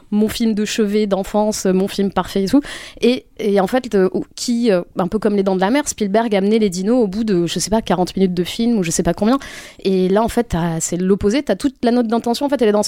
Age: 20-39